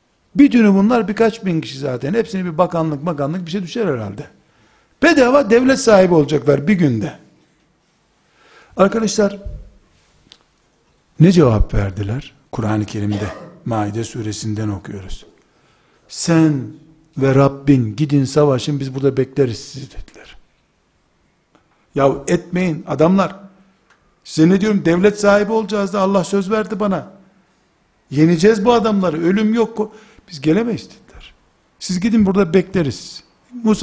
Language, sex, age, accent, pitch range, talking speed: Turkish, male, 60-79, native, 130-195 Hz, 120 wpm